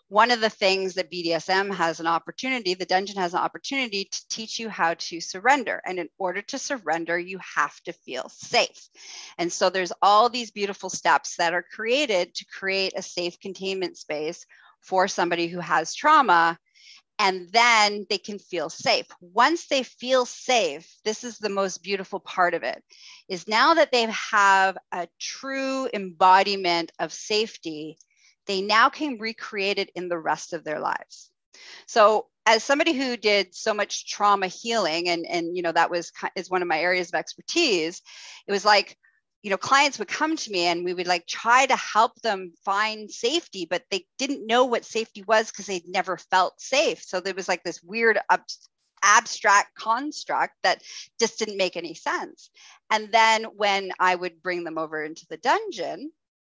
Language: English